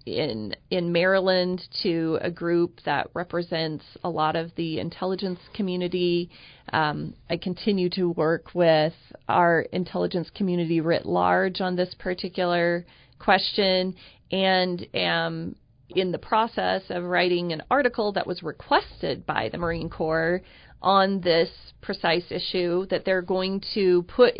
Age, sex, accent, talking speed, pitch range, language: 30-49, female, American, 135 wpm, 175-205 Hz, English